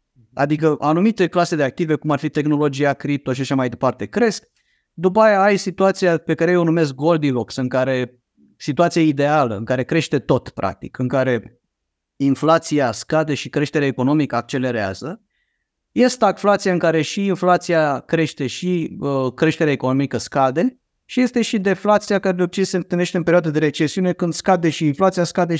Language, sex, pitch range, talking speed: Romanian, male, 130-180 Hz, 170 wpm